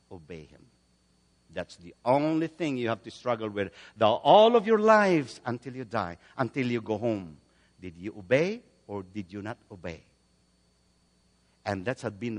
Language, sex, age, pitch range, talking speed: English, male, 50-69, 85-135 Hz, 170 wpm